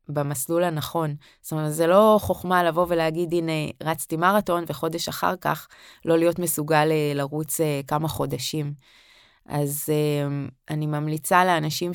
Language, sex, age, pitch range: Hebrew, female, 20-39, 150-175 Hz